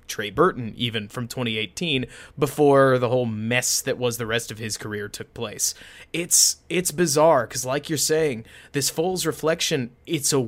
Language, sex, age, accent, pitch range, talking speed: English, male, 30-49, American, 120-155 Hz, 170 wpm